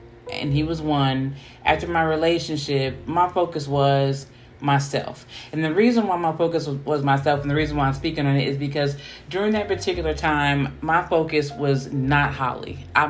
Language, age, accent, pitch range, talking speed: English, 30-49, American, 135-160 Hz, 180 wpm